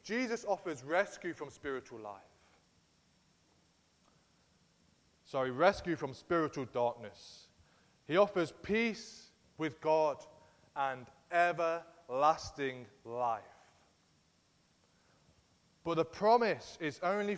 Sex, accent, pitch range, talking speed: male, British, 140-185 Hz, 85 wpm